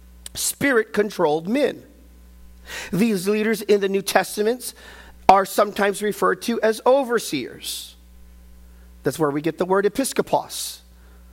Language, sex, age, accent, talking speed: English, male, 40-59, American, 110 wpm